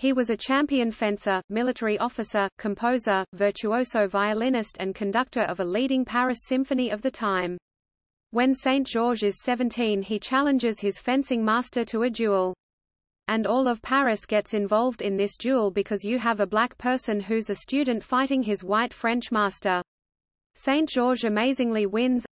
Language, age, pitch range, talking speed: Swedish, 30-49, 205-250 Hz, 155 wpm